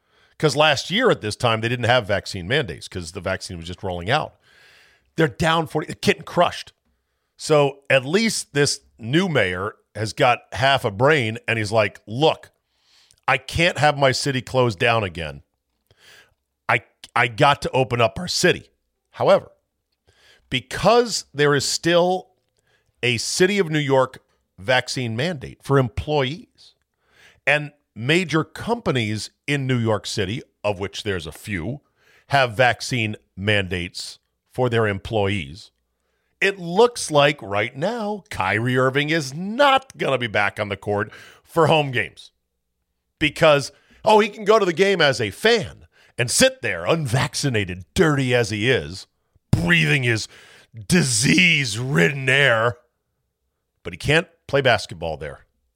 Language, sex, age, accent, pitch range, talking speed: English, male, 40-59, American, 100-150 Hz, 145 wpm